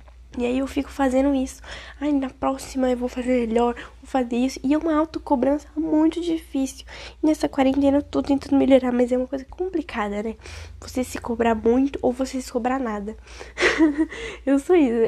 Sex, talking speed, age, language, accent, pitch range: female, 185 wpm, 10-29, Portuguese, Brazilian, 235-290 Hz